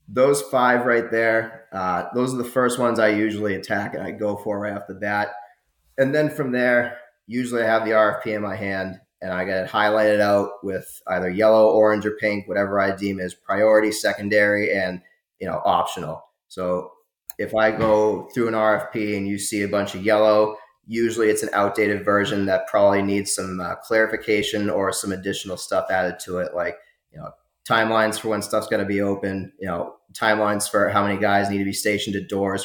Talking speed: 205 wpm